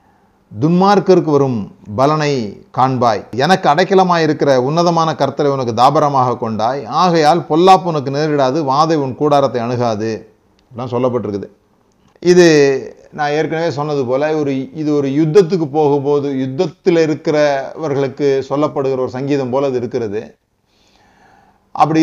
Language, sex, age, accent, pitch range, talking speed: Tamil, male, 30-49, native, 125-155 Hz, 105 wpm